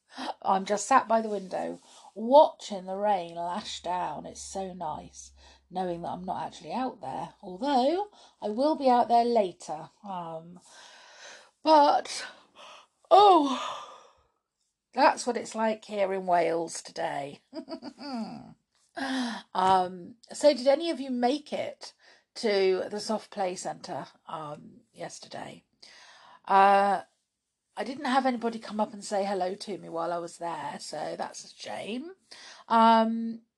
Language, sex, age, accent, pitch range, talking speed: English, female, 50-69, British, 185-260 Hz, 135 wpm